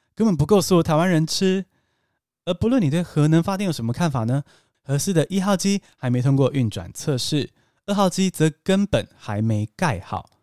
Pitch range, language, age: 120-180 Hz, Chinese, 20-39